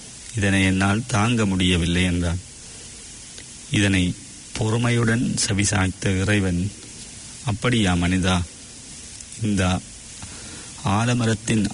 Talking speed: 60 wpm